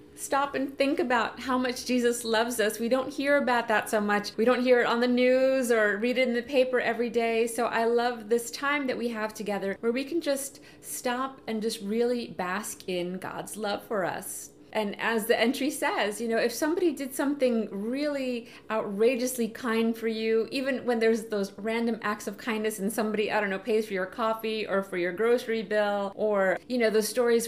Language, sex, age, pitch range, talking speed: English, female, 30-49, 205-245 Hz, 210 wpm